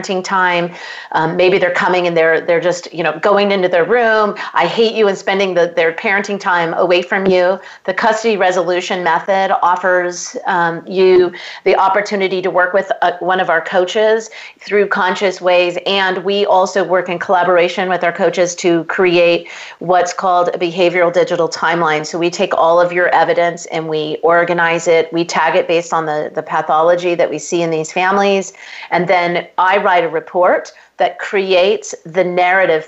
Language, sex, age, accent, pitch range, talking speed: English, female, 40-59, American, 165-190 Hz, 180 wpm